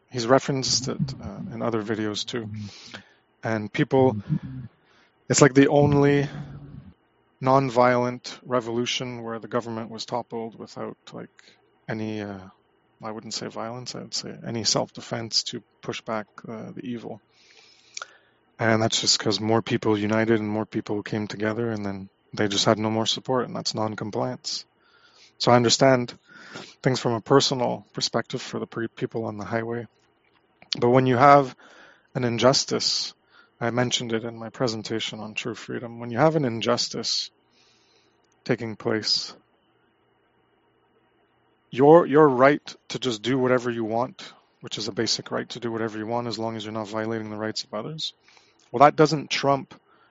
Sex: male